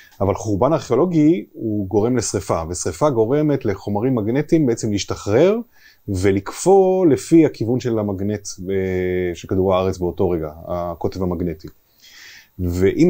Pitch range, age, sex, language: 95-135 Hz, 30-49, male, Hebrew